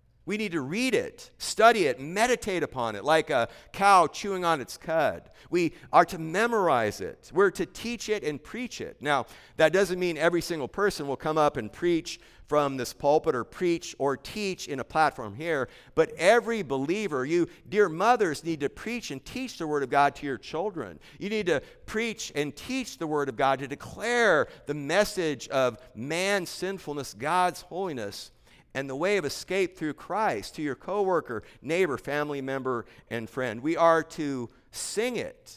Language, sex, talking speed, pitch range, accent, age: English, male, 185 wpm, 130-190 Hz, American, 50-69